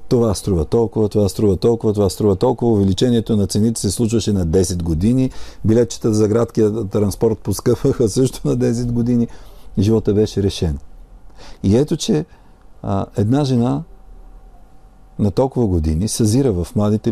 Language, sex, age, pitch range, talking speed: Bulgarian, male, 50-69, 85-115 Hz, 145 wpm